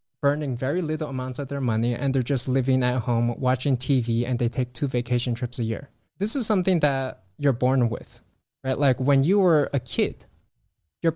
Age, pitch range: 20-39, 125-150 Hz